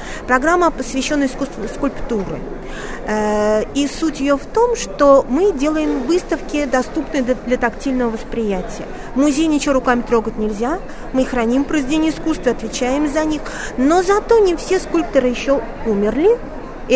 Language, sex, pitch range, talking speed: Russian, female, 225-285 Hz, 135 wpm